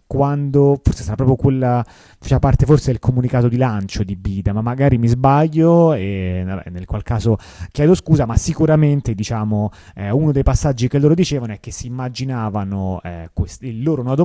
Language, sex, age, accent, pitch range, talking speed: Italian, male, 30-49, native, 105-140 Hz, 185 wpm